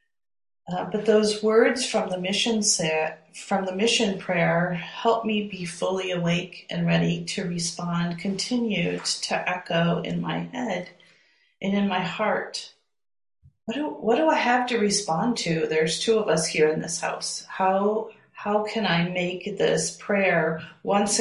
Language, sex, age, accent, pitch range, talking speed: English, female, 40-59, American, 170-210 Hz, 160 wpm